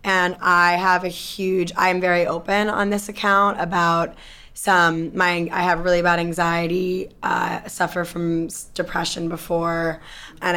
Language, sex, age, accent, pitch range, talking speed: English, female, 20-39, American, 165-185 Hz, 150 wpm